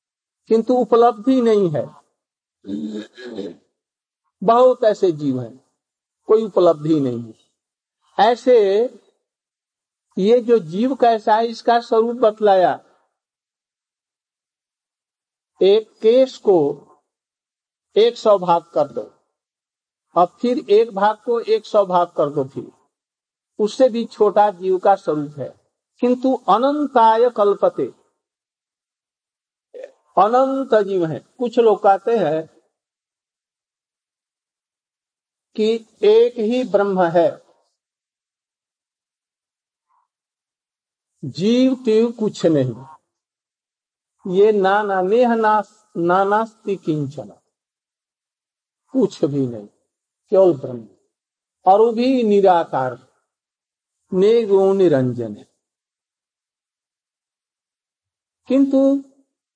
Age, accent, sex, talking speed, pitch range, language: 60-79, native, male, 85 wpm, 170-245 Hz, Hindi